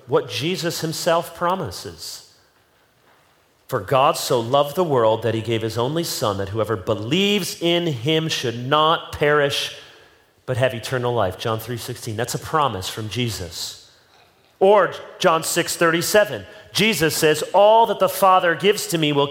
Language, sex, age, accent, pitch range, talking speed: English, male, 40-59, American, 125-185 Hz, 150 wpm